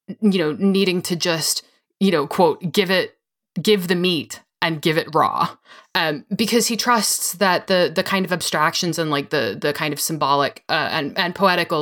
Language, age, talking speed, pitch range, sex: English, 20-39, 195 wpm, 165-210 Hz, female